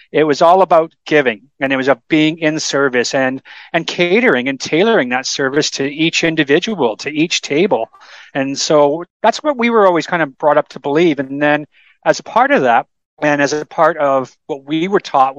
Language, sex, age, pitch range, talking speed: English, male, 40-59, 135-160 Hz, 210 wpm